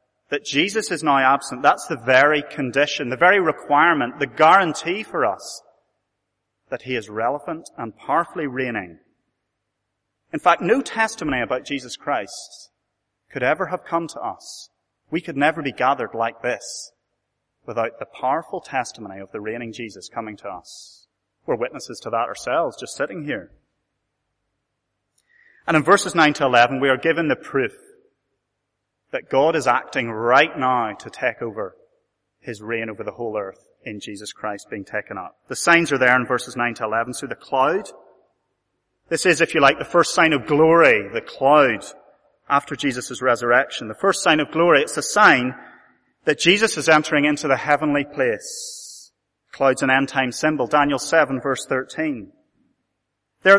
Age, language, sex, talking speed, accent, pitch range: 30-49, English, male, 165 wpm, British, 135-190 Hz